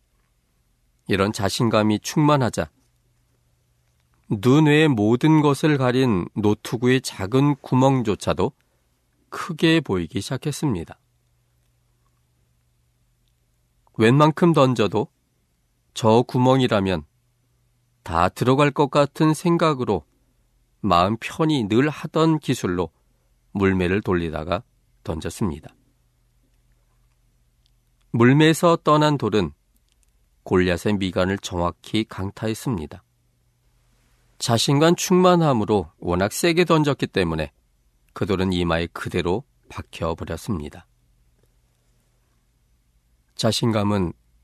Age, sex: 40-59, male